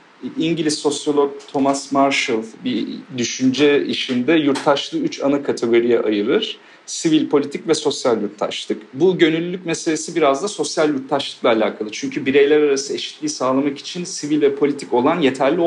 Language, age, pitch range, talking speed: Turkish, 40-59, 130-155 Hz, 140 wpm